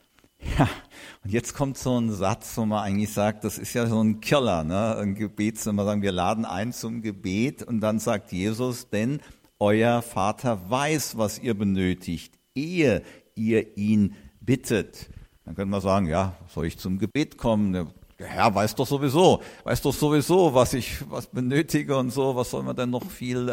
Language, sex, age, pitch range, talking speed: German, male, 50-69, 100-120 Hz, 190 wpm